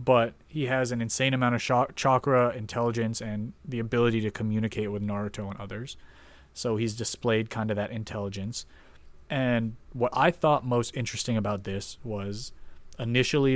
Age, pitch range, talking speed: 30-49, 105-120 Hz, 155 wpm